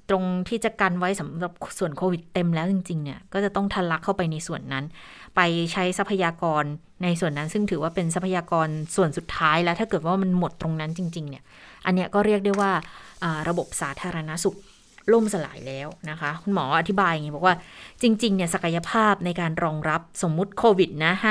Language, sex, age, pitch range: Thai, female, 20-39, 170-200 Hz